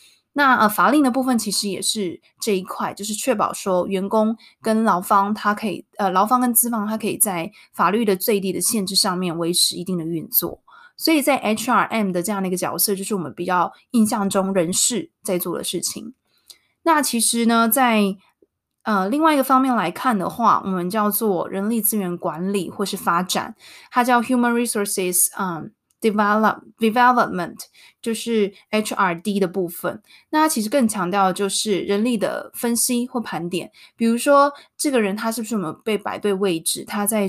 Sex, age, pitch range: female, 20-39, 195-235 Hz